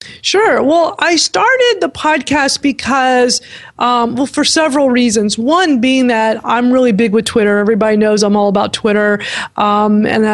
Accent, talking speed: American, 165 wpm